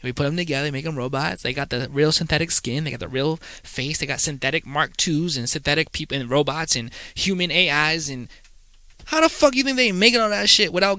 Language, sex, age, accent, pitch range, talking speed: English, male, 20-39, American, 130-180 Hz, 235 wpm